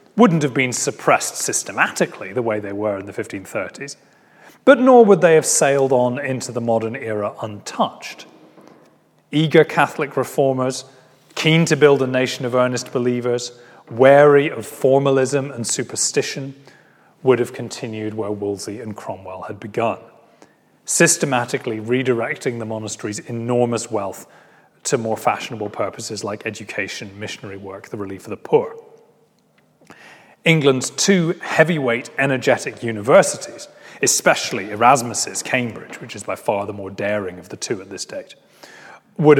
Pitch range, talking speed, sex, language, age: 110-140 Hz, 135 wpm, male, English, 30-49